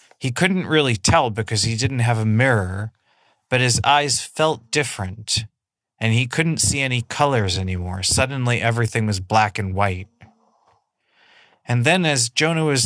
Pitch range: 105-130 Hz